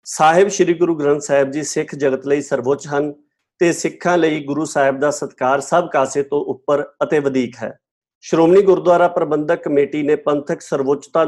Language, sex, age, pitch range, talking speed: Punjabi, male, 50-69, 135-160 Hz, 170 wpm